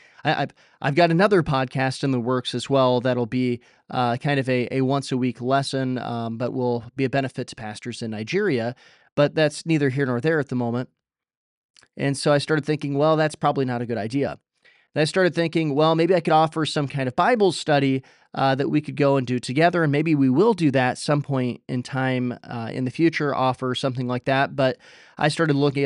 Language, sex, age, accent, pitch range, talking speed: English, male, 20-39, American, 125-150 Hz, 220 wpm